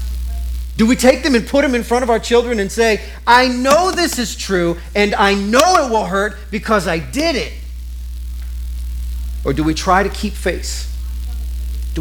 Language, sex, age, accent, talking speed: English, male, 40-59, American, 185 wpm